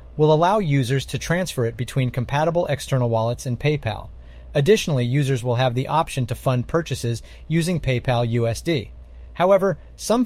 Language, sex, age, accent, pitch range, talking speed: English, male, 30-49, American, 115-150 Hz, 150 wpm